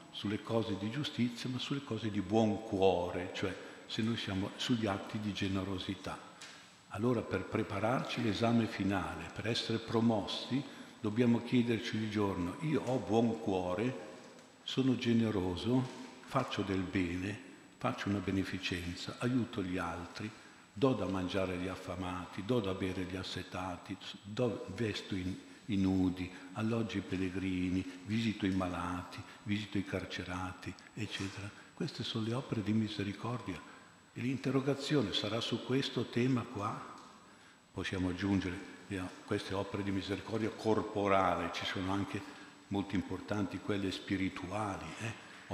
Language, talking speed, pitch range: Italian, 130 wpm, 95-115 Hz